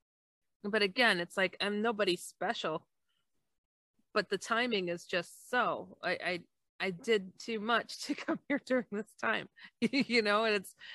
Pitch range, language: 175-225 Hz, English